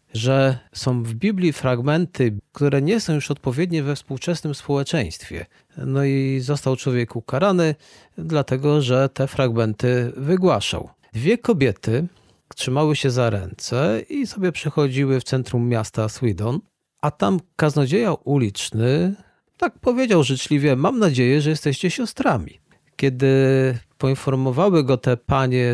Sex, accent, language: male, native, Polish